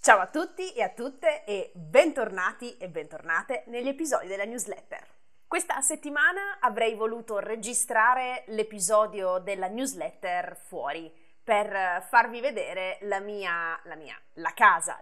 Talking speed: 130 wpm